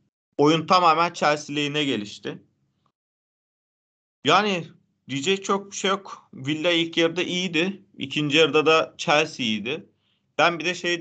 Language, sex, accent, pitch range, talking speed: Turkish, male, native, 120-165 Hz, 125 wpm